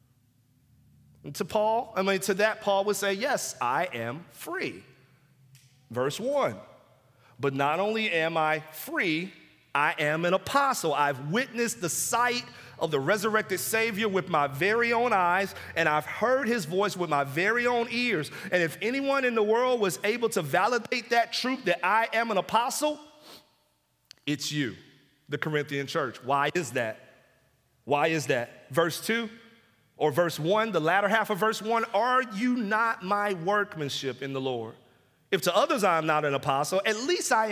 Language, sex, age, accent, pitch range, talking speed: English, male, 40-59, American, 155-240 Hz, 170 wpm